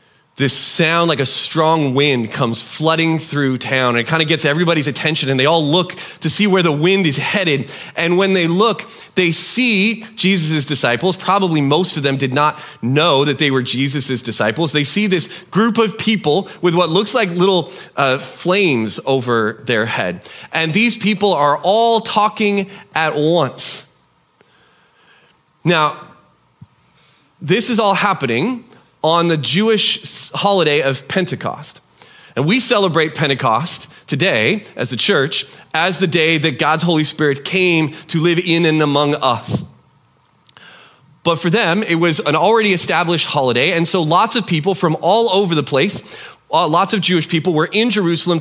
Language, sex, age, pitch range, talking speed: English, male, 30-49, 145-190 Hz, 160 wpm